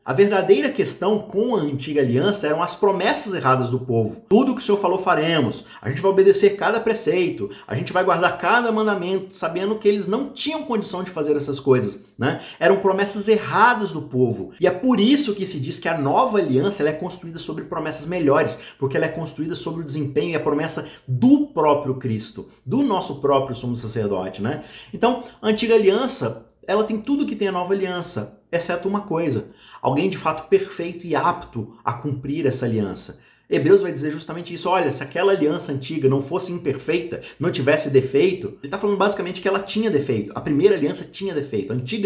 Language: Portuguese